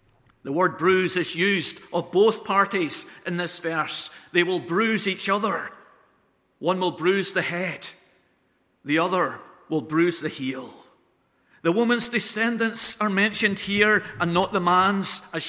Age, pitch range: 50-69, 165-215 Hz